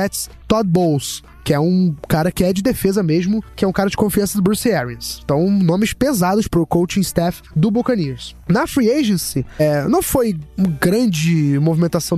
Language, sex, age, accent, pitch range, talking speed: Portuguese, male, 20-39, Brazilian, 165-215 Hz, 185 wpm